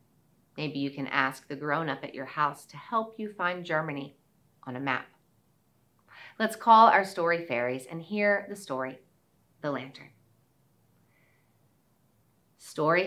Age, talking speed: 40-59, 140 wpm